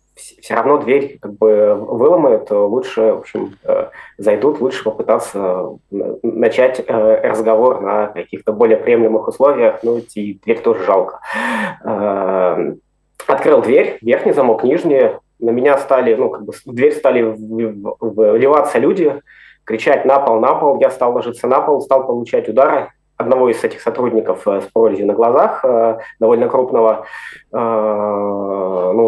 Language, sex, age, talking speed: Russian, male, 20-39, 130 wpm